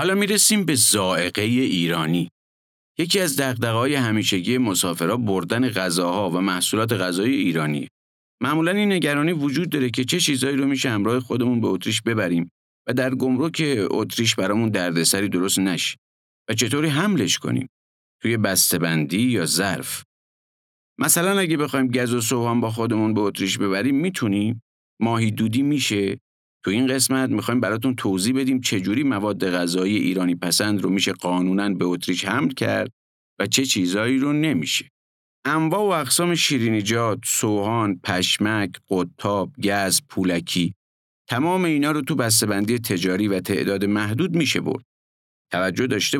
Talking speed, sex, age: 145 wpm, male, 50-69